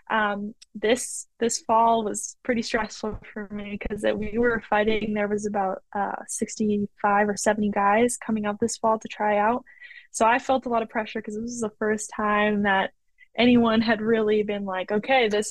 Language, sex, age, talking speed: English, female, 10-29, 190 wpm